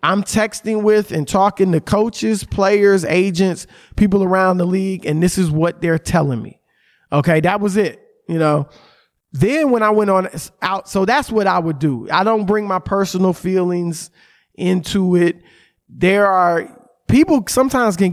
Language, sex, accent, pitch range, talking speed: English, male, American, 160-205 Hz, 170 wpm